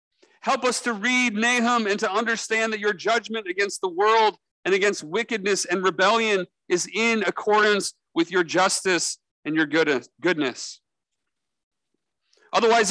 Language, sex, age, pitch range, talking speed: English, male, 40-59, 175-220 Hz, 135 wpm